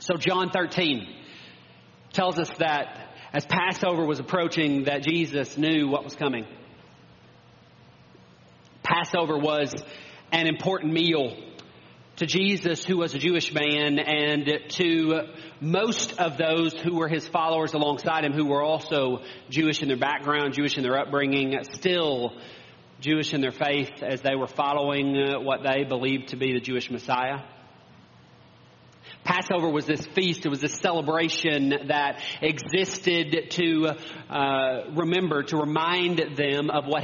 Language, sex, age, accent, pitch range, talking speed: English, male, 40-59, American, 130-160 Hz, 140 wpm